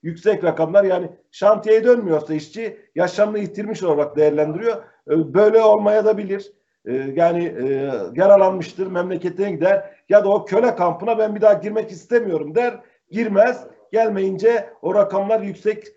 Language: Turkish